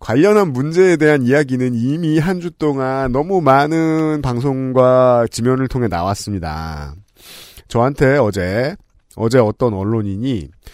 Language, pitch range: Korean, 105-165 Hz